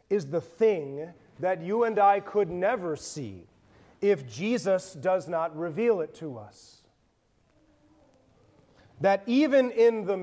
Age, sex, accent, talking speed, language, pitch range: 30-49, male, American, 130 wpm, English, 150-230 Hz